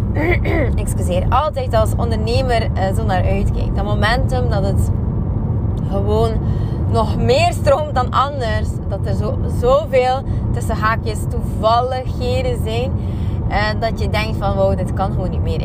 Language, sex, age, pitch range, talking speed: Dutch, female, 20-39, 95-110 Hz, 135 wpm